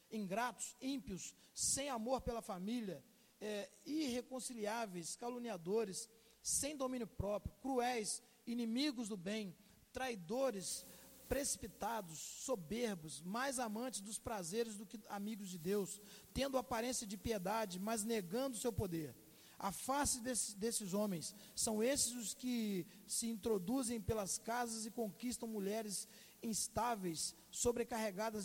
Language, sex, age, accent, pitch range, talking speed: Portuguese, male, 20-39, Brazilian, 195-240 Hz, 110 wpm